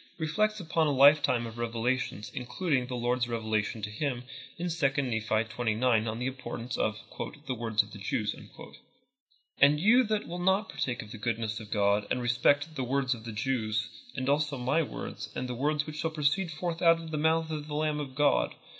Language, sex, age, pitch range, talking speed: English, male, 30-49, 120-155 Hz, 210 wpm